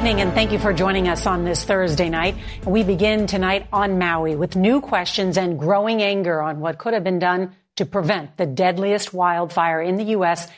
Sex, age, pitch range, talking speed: female, 40-59, 170-205 Hz, 210 wpm